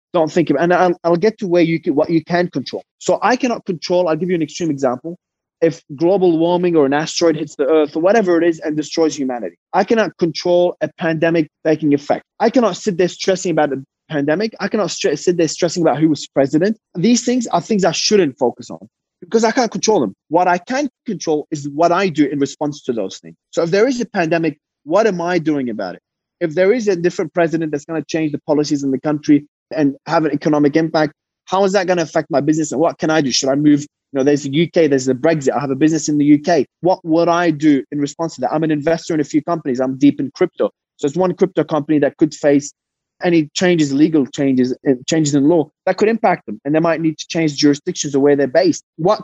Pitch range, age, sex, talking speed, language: 150-180 Hz, 20-39, male, 250 wpm, English